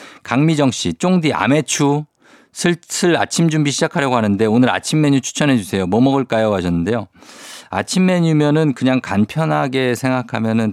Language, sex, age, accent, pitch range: Korean, male, 50-69, native, 100-145 Hz